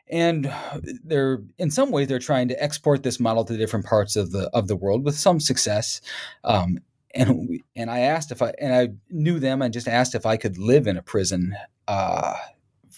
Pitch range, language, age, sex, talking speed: 105-130 Hz, English, 30-49, male, 205 wpm